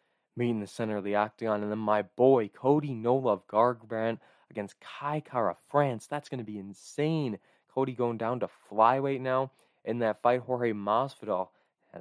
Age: 20-39